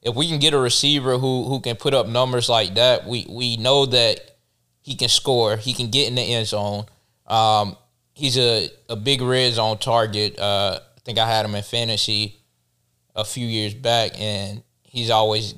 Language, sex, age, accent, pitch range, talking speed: English, male, 20-39, American, 105-125 Hz, 195 wpm